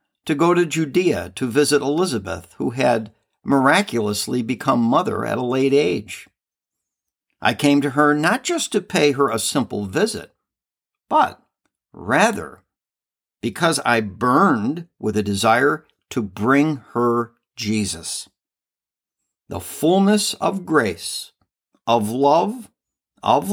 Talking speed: 120 wpm